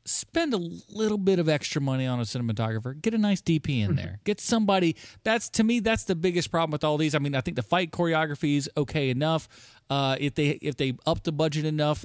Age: 30-49